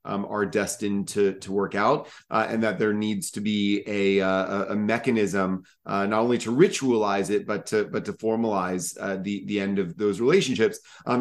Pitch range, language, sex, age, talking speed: 105-125 Hz, English, male, 30-49, 200 wpm